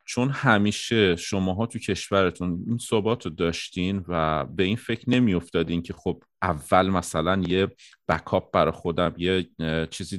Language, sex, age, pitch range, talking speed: Persian, male, 30-49, 85-110 Hz, 140 wpm